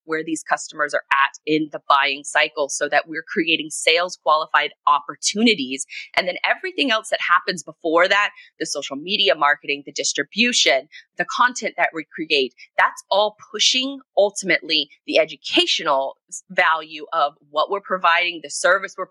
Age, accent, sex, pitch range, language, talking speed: 20-39, American, female, 155-210 Hz, English, 155 wpm